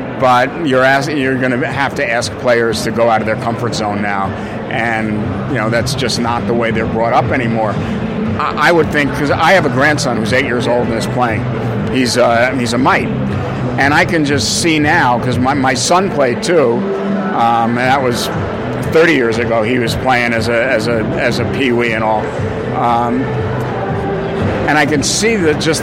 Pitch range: 120-145 Hz